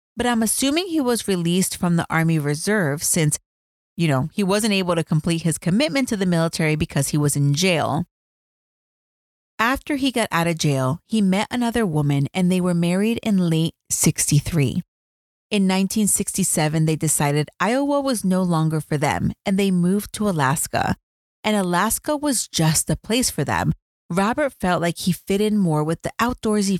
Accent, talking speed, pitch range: American, 175 wpm, 150-210 Hz